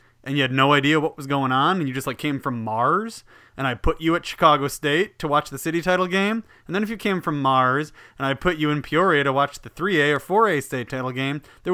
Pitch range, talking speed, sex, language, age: 120-150 Hz, 265 wpm, male, English, 30-49